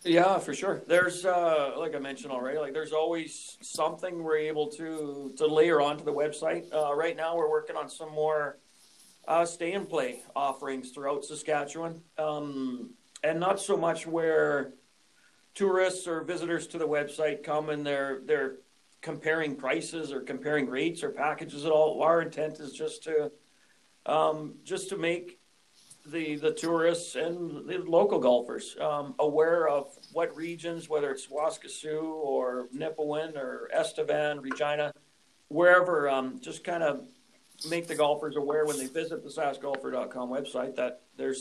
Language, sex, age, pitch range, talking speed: English, male, 40-59, 145-165 Hz, 155 wpm